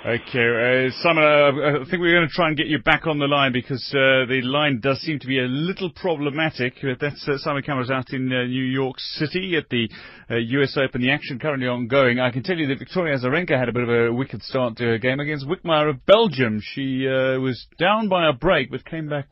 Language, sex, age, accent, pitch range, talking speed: English, male, 30-49, British, 120-155 Hz, 240 wpm